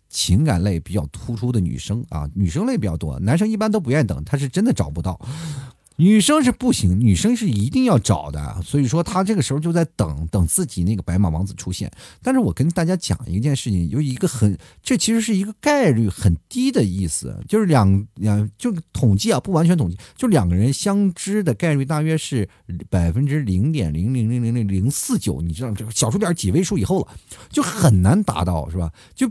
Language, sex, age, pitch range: Chinese, male, 50-69, 100-165 Hz